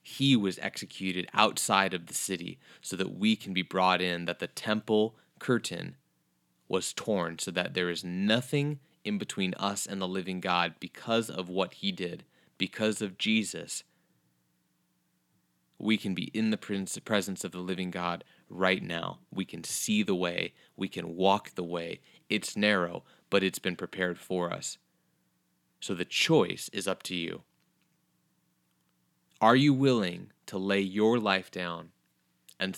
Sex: male